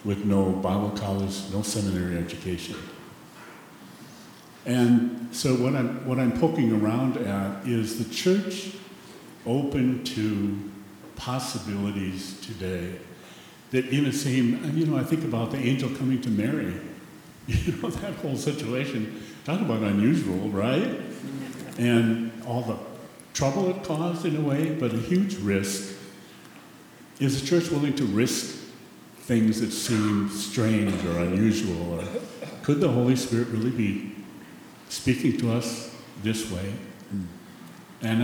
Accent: American